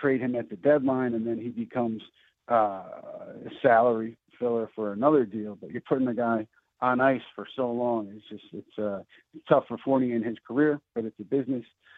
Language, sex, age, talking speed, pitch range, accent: English, male, 50-69, 200 wpm, 115-140 Hz, American